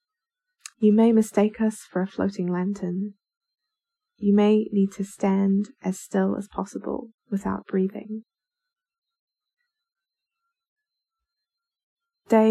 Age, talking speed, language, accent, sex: 20-39, 95 wpm, English, British, female